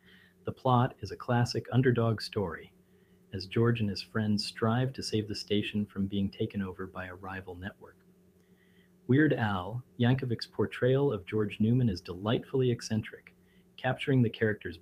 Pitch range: 95-125 Hz